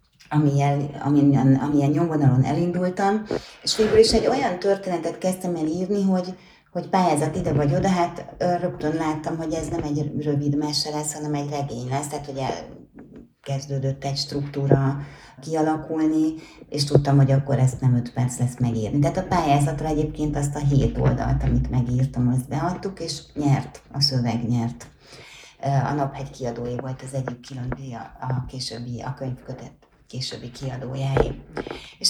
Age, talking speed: 30-49, 150 wpm